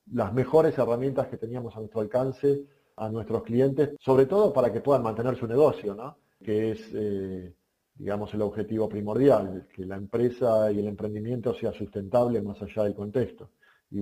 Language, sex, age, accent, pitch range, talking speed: Spanish, male, 40-59, Argentinian, 105-130 Hz, 170 wpm